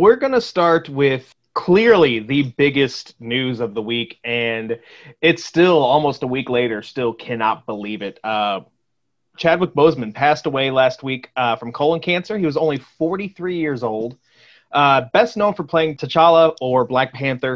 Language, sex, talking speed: English, male, 170 wpm